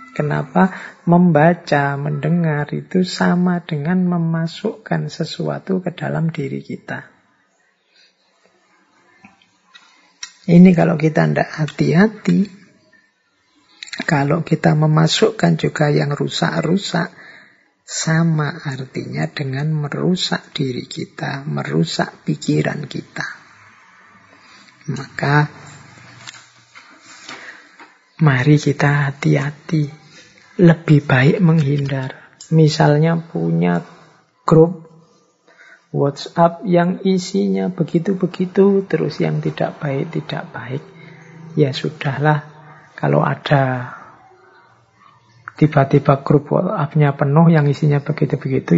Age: 50-69